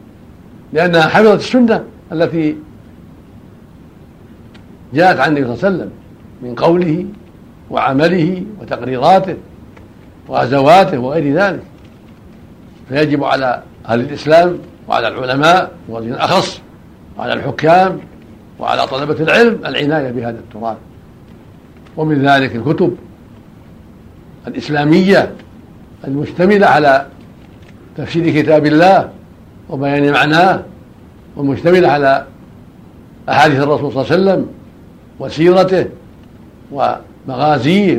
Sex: male